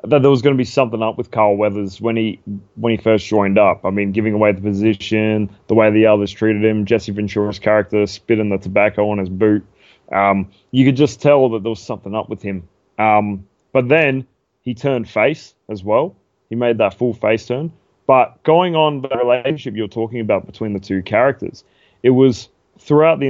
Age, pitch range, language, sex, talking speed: 20-39, 105-130 Hz, English, male, 210 wpm